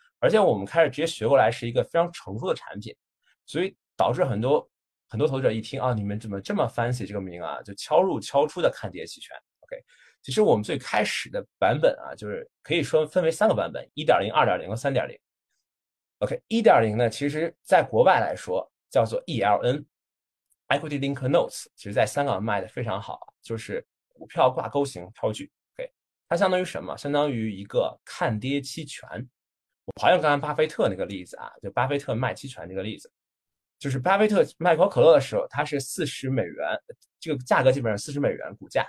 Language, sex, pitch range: Chinese, male, 115-165 Hz